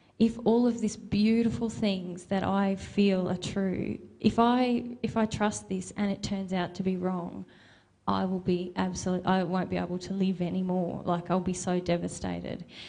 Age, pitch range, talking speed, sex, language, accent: 20-39, 185-205 Hz, 185 wpm, female, English, Australian